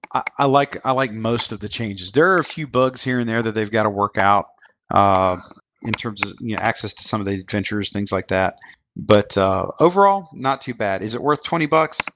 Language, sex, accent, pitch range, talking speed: English, male, American, 100-125 Hz, 235 wpm